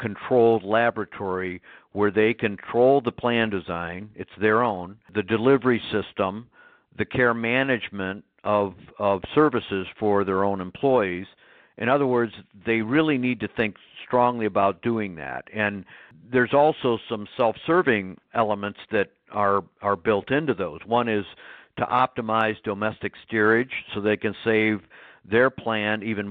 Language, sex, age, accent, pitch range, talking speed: English, male, 60-79, American, 100-120 Hz, 140 wpm